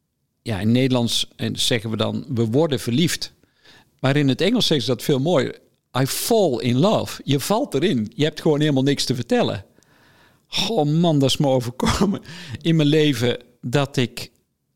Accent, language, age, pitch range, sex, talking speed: Dutch, Dutch, 50-69, 110-150 Hz, male, 175 wpm